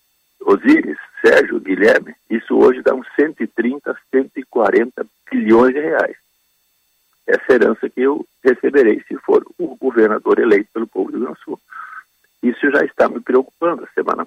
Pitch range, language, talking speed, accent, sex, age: 315-425 Hz, Portuguese, 145 wpm, Brazilian, male, 50-69